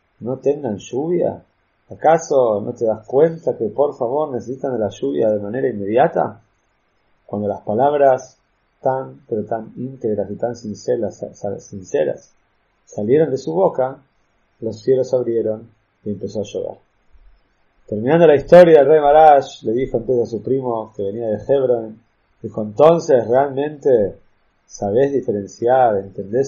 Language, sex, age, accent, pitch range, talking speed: Spanish, male, 30-49, Argentinian, 105-130 Hz, 140 wpm